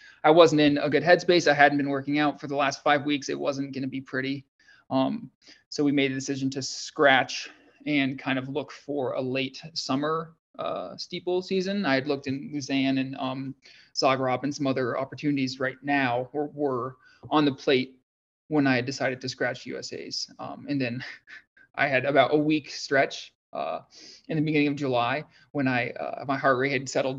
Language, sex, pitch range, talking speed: English, male, 130-145 Hz, 195 wpm